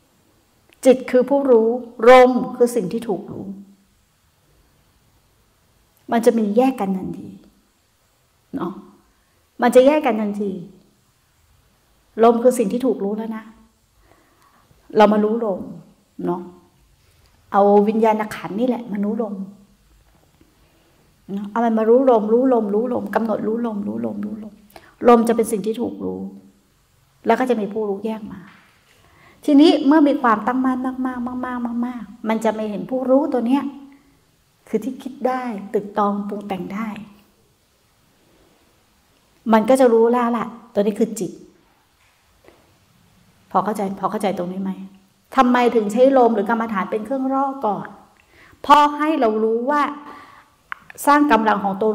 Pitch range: 205-250 Hz